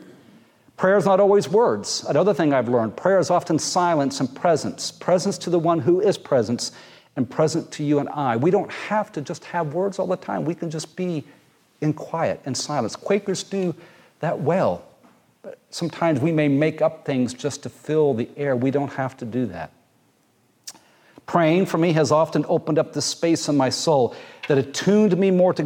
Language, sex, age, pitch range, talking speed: English, male, 50-69, 130-165 Hz, 195 wpm